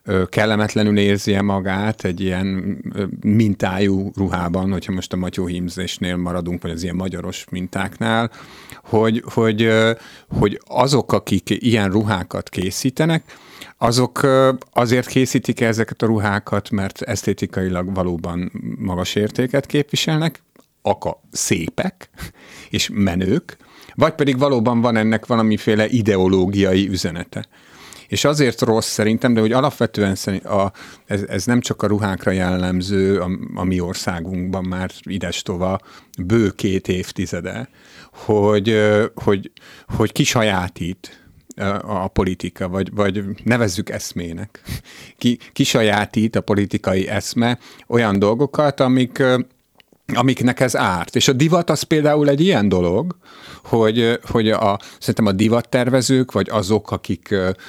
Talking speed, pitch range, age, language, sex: 115 wpm, 95-120 Hz, 50-69, Hungarian, male